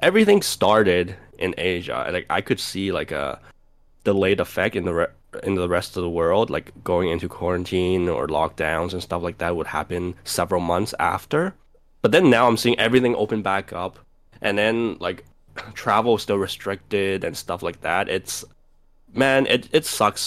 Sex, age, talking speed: male, 10-29, 180 wpm